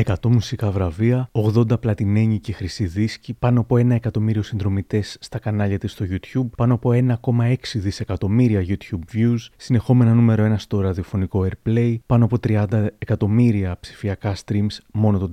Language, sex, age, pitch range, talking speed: Greek, male, 30-49, 105-125 Hz, 145 wpm